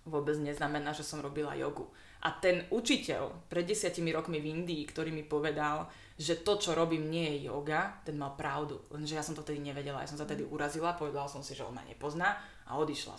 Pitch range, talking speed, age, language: 145-170 Hz, 215 wpm, 20-39, Slovak